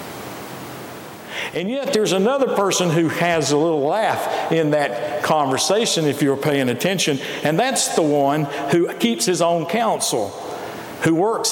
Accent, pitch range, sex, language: American, 145-190 Hz, male, English